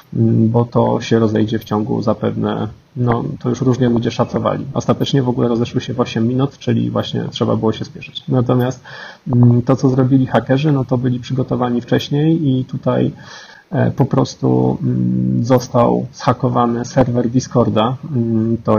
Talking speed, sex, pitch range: 145 wpm, male, 115-130 Hz